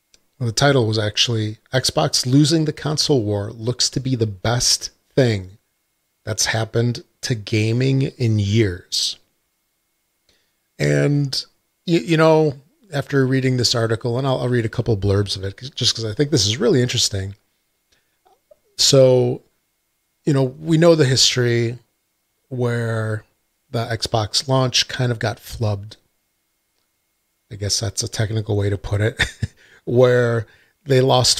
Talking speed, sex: 140 wpm, male